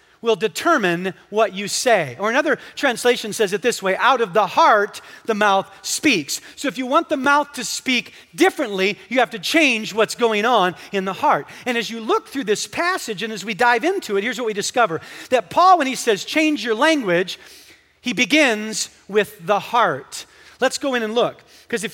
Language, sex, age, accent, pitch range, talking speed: English, male, 40-59, American, 190-255 Hz, 205 wpm